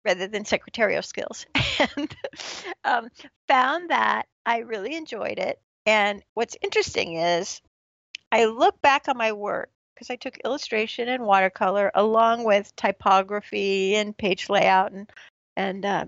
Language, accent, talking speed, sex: English, American, 140 wpm, female